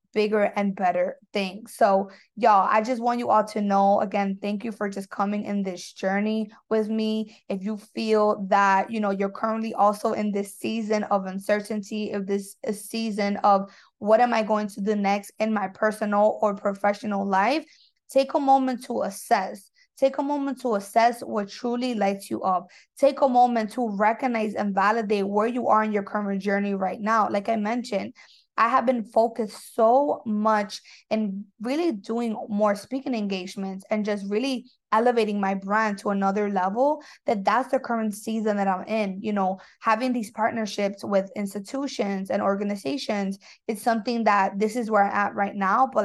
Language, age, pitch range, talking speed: English, 20-39, 200-230 Hz, 180 wpm